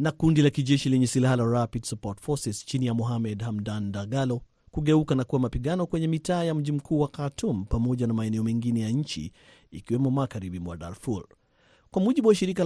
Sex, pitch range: male, 120-150 Hz